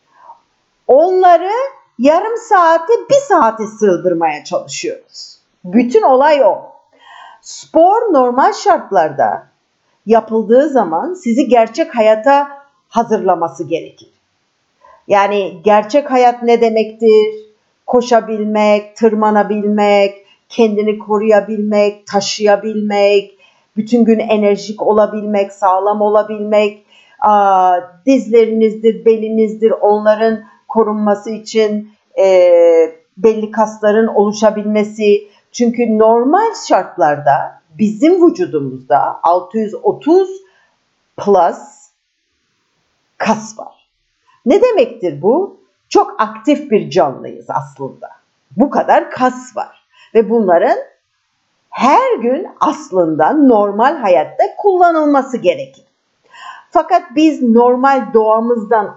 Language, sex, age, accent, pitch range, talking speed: Turkish, female, 50-69, native, 205-280 Hz, 80 wpm